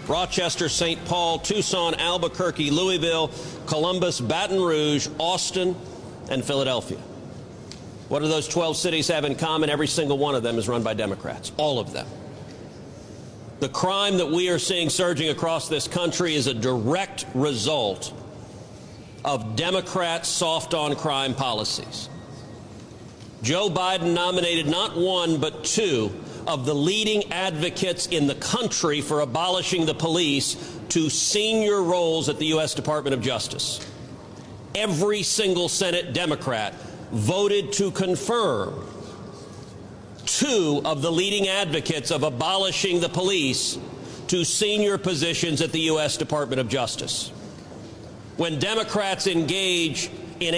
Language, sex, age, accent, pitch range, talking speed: English, male, 50-69, American, 150-180 Hz, 130 wpm